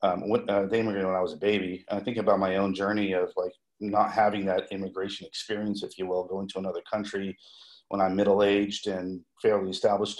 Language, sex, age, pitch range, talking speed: English, male, 40-59, 95-105 Hz, 205 wpm